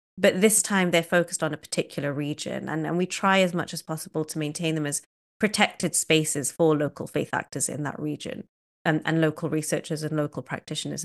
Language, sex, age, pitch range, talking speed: English, female, 30-49, 155-175 Hz, 200 wpm